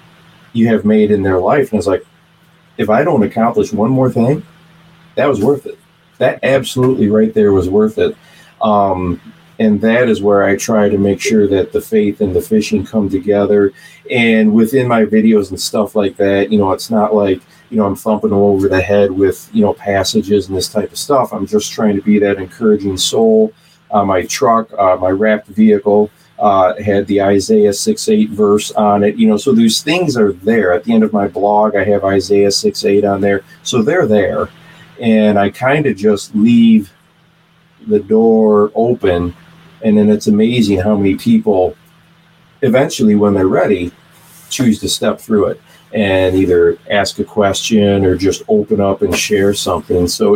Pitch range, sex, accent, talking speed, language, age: 100-165 Hz, male, American, 190 wpm, English, 40-59